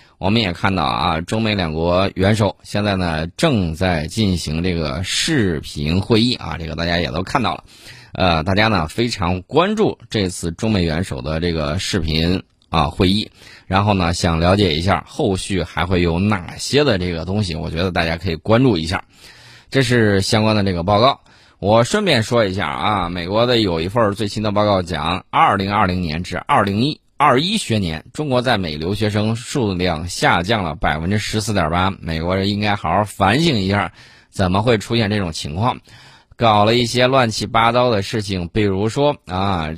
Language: Chinese